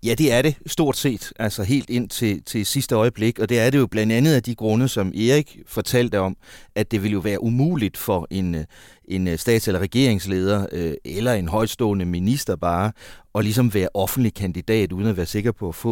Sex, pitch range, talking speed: male, 95-125 Hz, 210 wpm